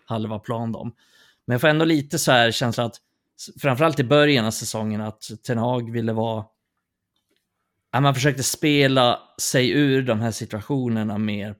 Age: 30-49